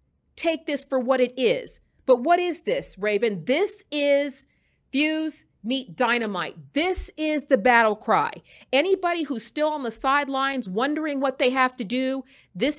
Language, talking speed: English, 160 wpm